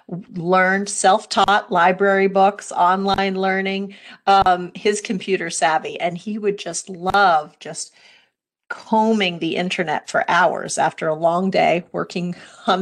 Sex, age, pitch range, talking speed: female, 40-59, 170-195 Hz, 125 wpm